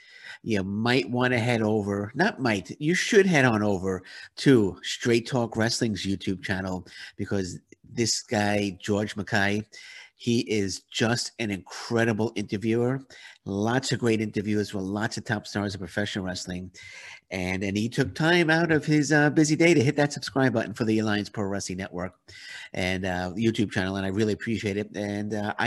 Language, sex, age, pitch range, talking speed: English, male, 50-69, 95-120 Hz, 175 wpm